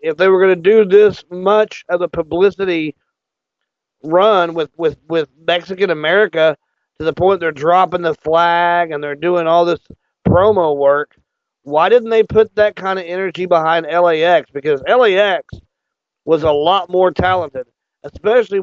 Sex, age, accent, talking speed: male, 40-59, American, 155 wpm